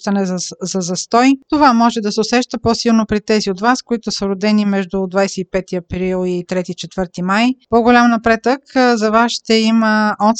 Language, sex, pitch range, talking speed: Bulgarian, female, 205-245 Hz, 165 wpm